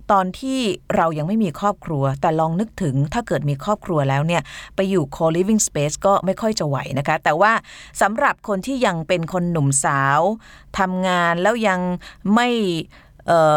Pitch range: 150-205 Hz